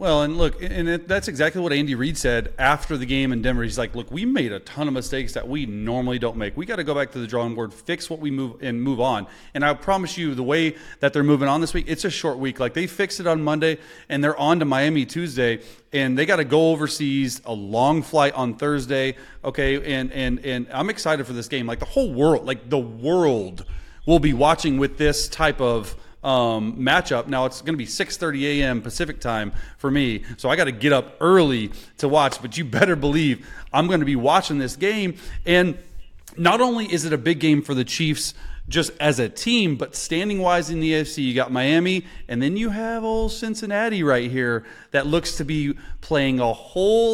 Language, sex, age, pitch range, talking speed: English, male, 30-49, 130-165 Hz, 230 wpm